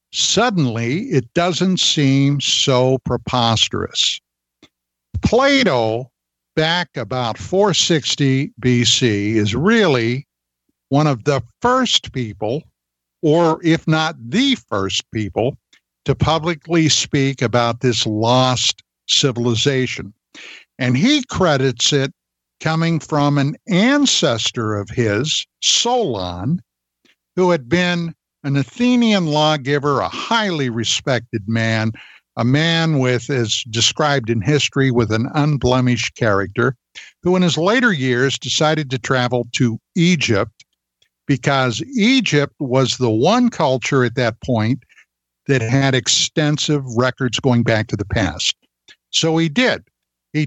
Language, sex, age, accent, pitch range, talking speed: English, male, 60-79, American, 115-160 Hz, 115 wpm